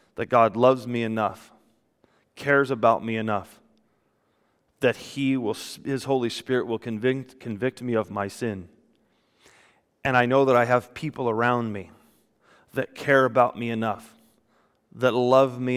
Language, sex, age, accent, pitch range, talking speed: English, male, 30-49, American, 115-135 Hz, 150 wpm